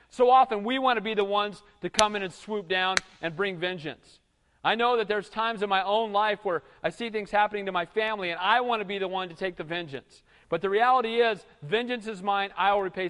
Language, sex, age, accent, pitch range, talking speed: English, male, 40-59, American, 170-220 Hz, 250 wpm